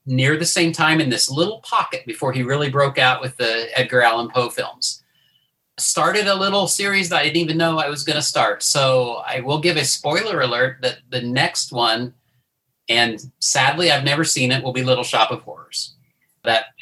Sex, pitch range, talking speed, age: male, 125-165 Hz, 205 wpm, 40-59